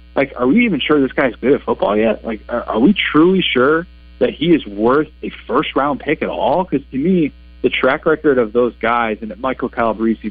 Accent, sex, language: American, male, English